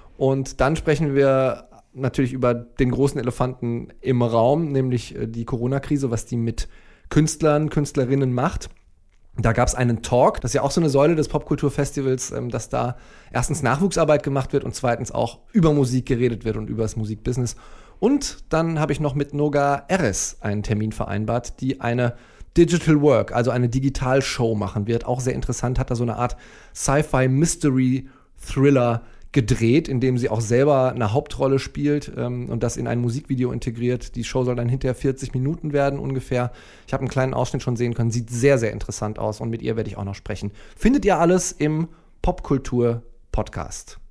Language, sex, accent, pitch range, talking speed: German, male, German, 120-150 Hz, 180 wpm